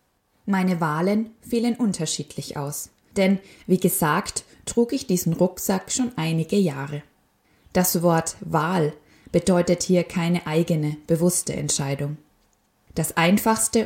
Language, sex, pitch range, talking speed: German, female, 160-195 Hz, 115 wpm